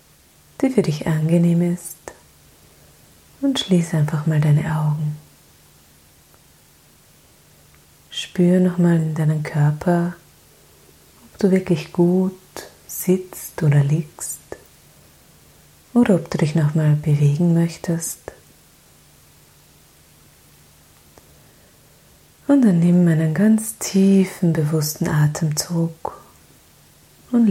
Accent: German